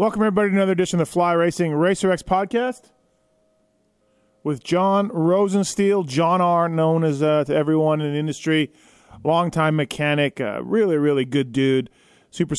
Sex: male